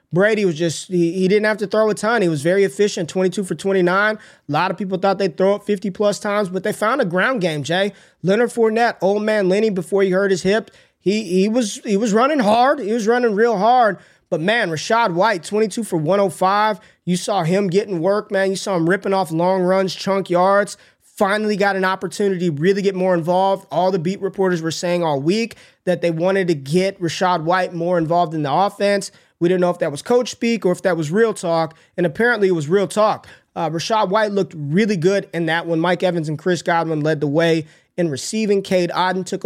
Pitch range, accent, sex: 175-205 Hz, American, male